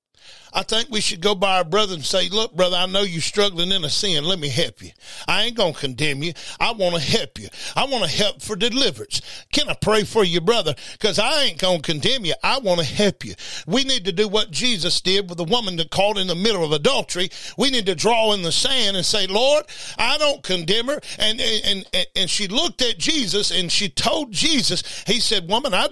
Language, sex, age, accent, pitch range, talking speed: English, male, 50-69, American, 185-255 Hz, 245 wpm